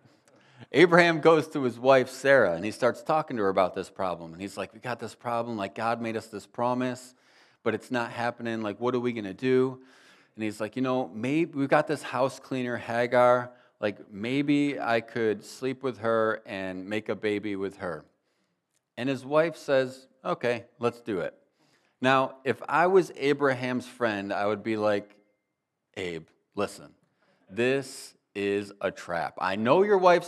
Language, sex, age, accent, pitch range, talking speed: English, male, 30-49, American, 105-140 Hz, 180 wpm